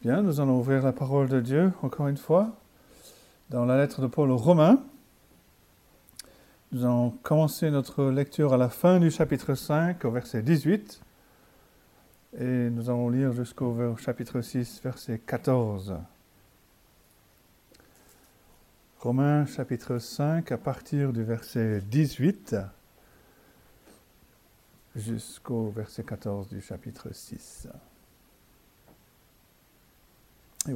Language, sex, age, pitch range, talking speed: French, male, 50-69, 120-160 Hz, 110 wpm